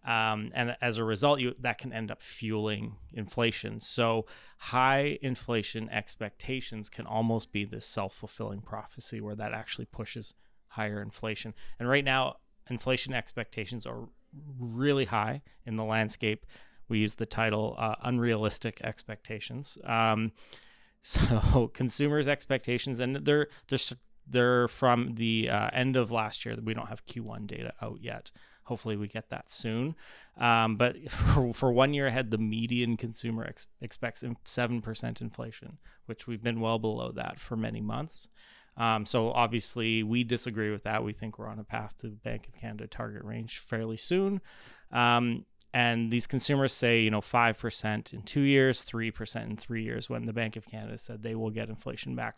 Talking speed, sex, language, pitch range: 165 wpm, male, English, 110-125 Hz